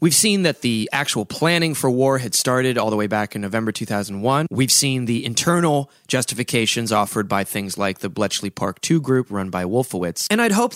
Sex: male